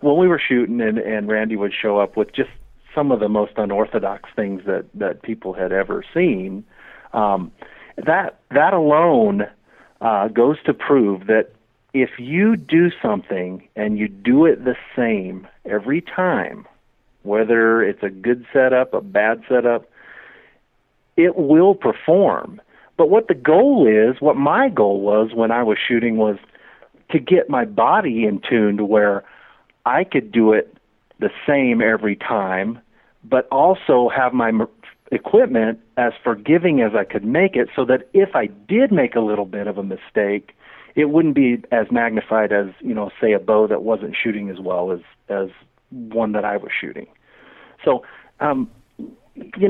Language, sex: English, male